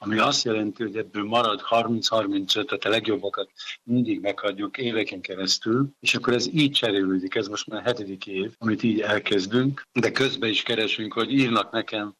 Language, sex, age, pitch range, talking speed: Hungarian, male, 50-69, 100-115 Hz, 170 wpm